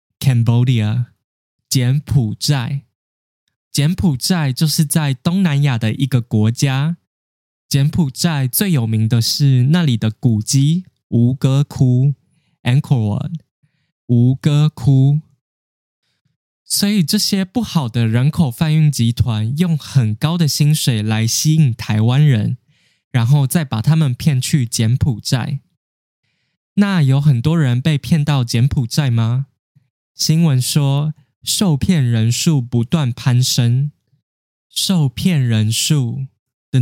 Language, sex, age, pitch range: Chinese, male, 10-29, 120-150 Hz